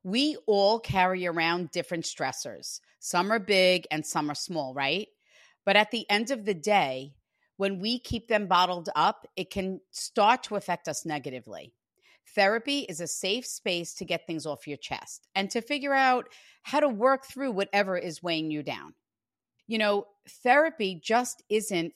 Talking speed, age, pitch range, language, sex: 170 wpm, 40-59, 170-225 Hz, English, female